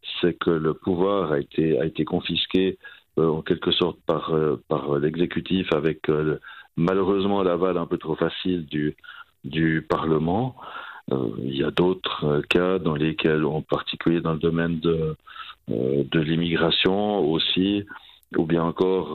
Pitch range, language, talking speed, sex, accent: 80-95 Hz, French, 160 wpm, male, French